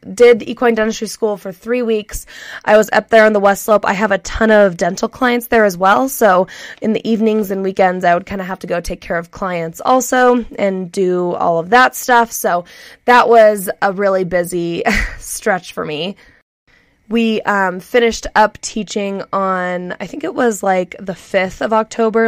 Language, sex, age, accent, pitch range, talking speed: English, female, 20-39, American, 185-225 Hz, 195 wpm